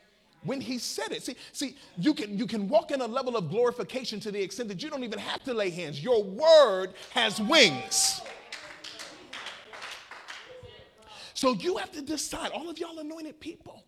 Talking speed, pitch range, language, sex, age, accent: 175 wpm, 160-240 Hz, English, male, 40-59, American